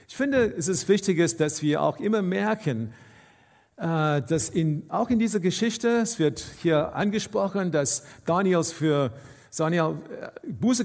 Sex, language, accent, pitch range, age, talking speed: male, German, German, 150-205 Hz, 50-69, 140 wpm